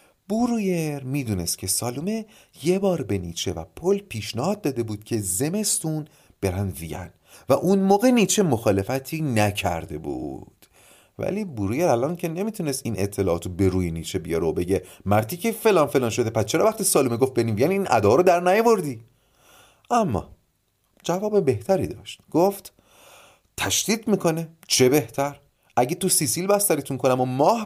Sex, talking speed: male, 150 wpm